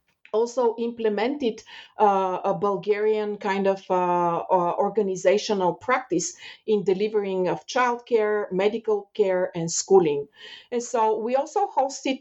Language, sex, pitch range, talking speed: English, female, 185-230 Hz, 120 wpm